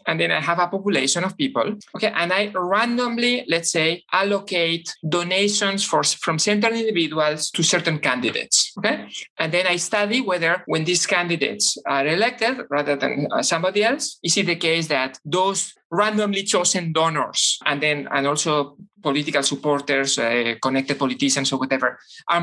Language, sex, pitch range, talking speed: English, male, 160-205 Hz, 160 wpm